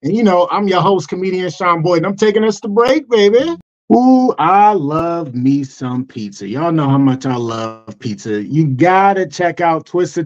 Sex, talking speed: male, 205 wpm